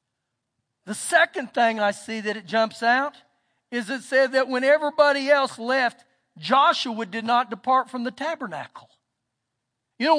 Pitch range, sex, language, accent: 230-310 Hz, male, English, American